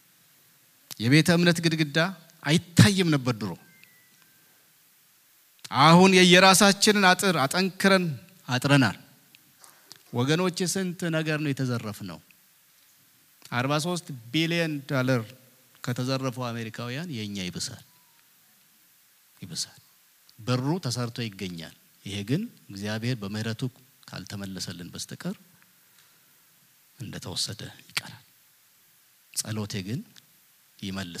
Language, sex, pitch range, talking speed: English, male, 120-170 Hz, 80 wpm